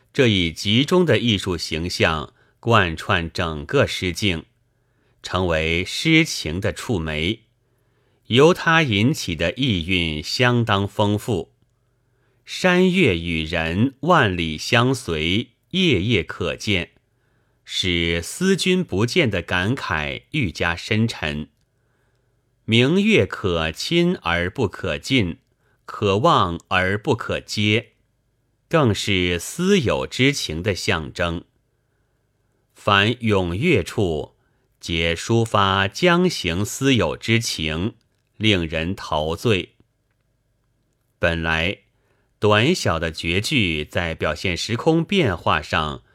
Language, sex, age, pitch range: Chinese, male, 30-49, 90-125 Hz